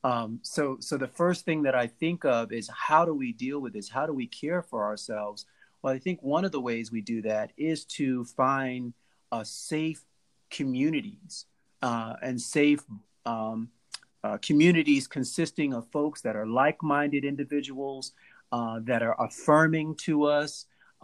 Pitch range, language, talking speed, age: 120-150 Hz, English, 165 wpm, 40-59